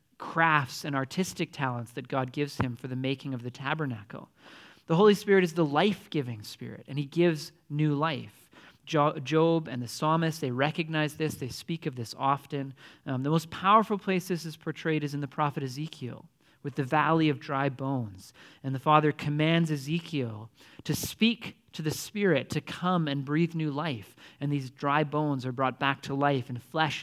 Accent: American